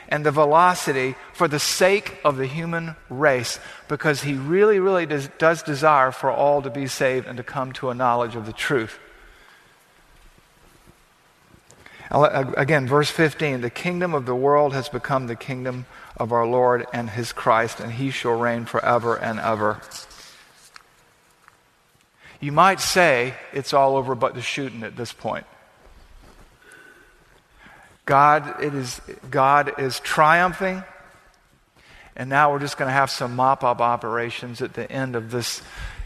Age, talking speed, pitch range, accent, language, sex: 50-69, 150 wpm, 125-150 Hz, American, English, male